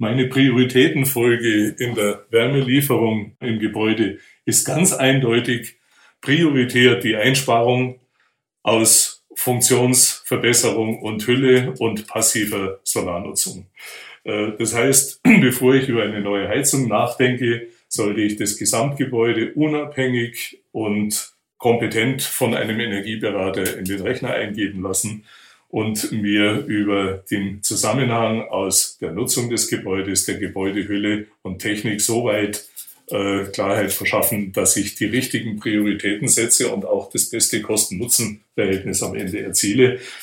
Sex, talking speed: male, 115 wpm